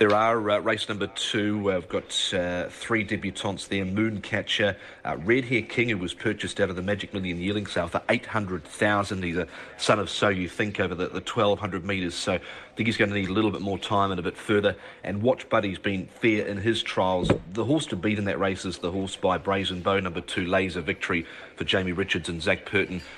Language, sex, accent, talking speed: English, male, Australian, 230 wpm